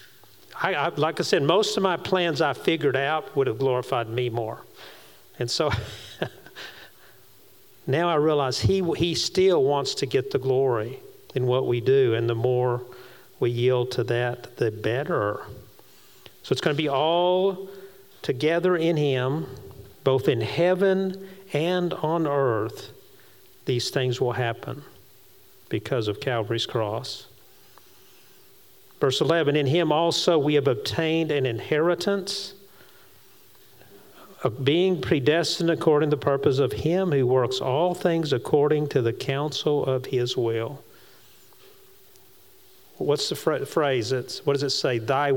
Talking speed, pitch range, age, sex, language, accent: 135 wpm, 125-175 Hz, 50-69, male, English, American